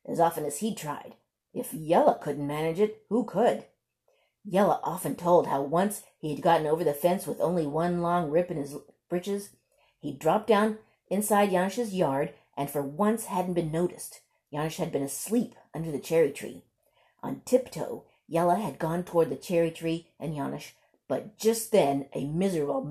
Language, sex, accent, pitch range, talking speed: English, female, American, 155-205 Hz, 175 wpm